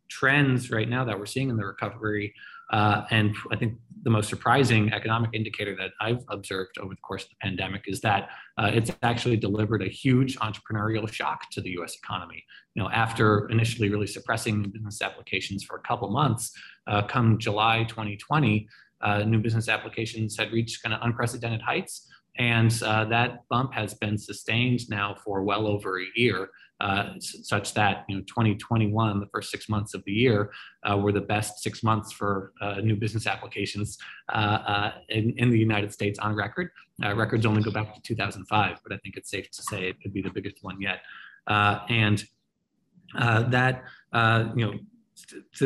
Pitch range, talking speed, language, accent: 100-115 Hz, 185 wpm, English, American